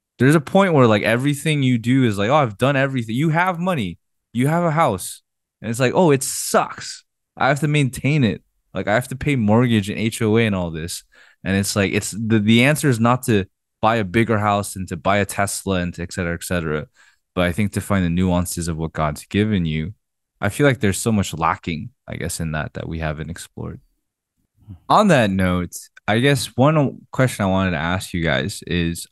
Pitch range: 90-120 Hz